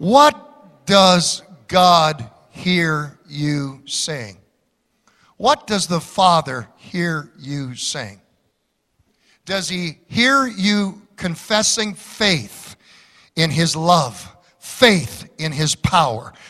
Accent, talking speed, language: American, 95 wpm, English